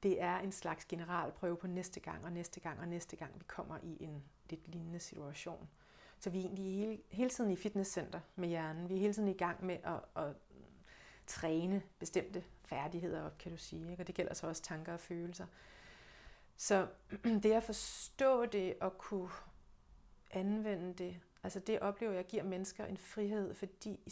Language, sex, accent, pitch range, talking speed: Danish, female, native, 170-200 Hz, 185 wpm